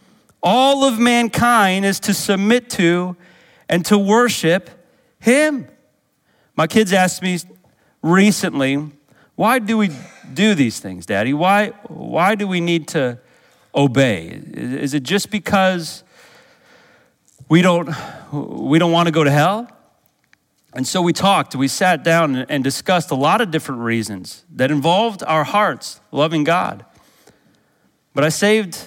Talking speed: 135 wpm